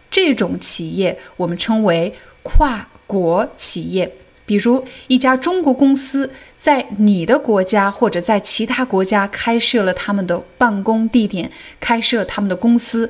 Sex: female